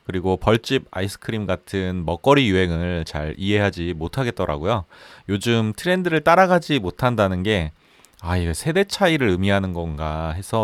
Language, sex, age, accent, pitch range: Korean, male, 30-49, native, 90-135 Hz